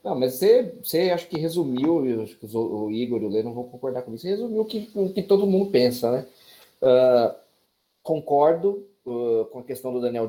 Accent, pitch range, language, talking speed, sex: Brazilian, 125-200 Hz, Portuguese, 220 wpm, male